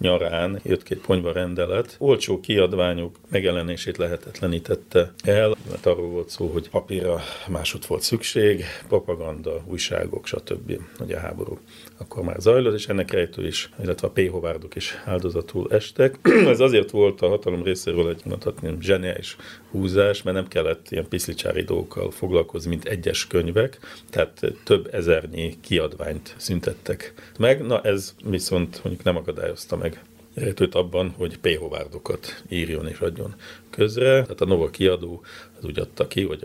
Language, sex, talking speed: Hungarian, male, 145 wpm